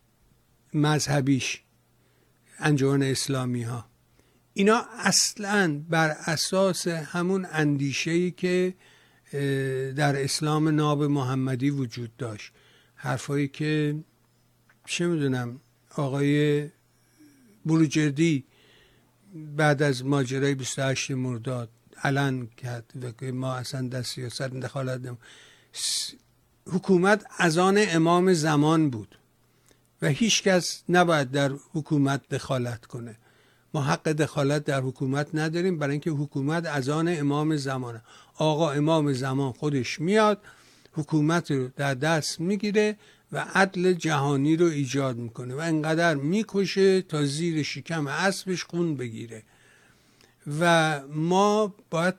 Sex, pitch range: male, 135-170 Hz